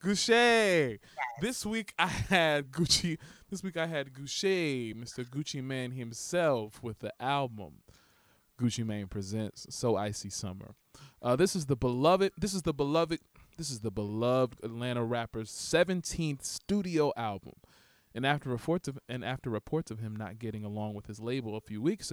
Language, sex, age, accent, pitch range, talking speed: English, male, 20-39, American, 110-150 Hz, 165 wpm